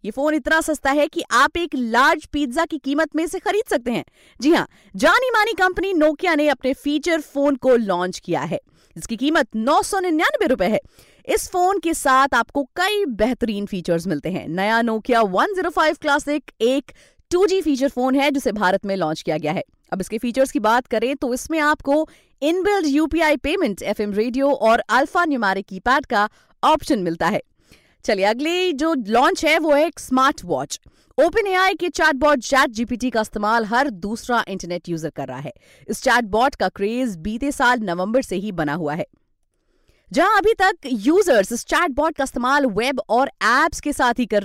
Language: Hindi